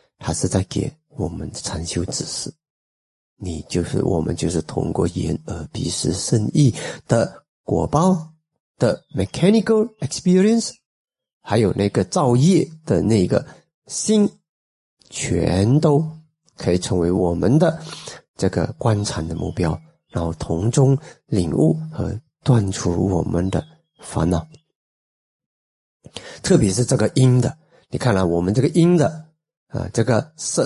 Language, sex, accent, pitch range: Chinese, male, native, 95-160 Hz